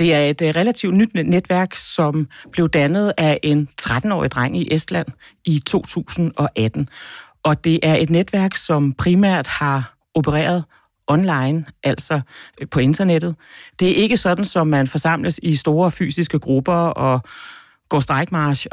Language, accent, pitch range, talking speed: Danish, native, 145-170 Hz, 140 wpm